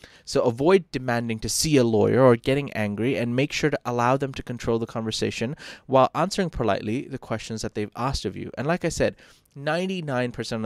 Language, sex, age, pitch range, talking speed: English, male, 20-39, 100-130 Hz, 195 wpm